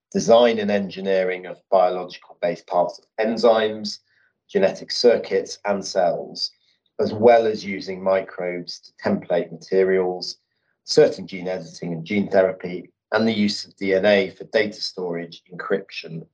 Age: 40-59